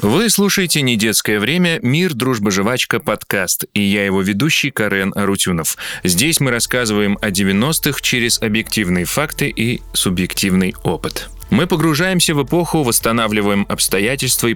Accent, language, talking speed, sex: native, Russian, 130 wpm, male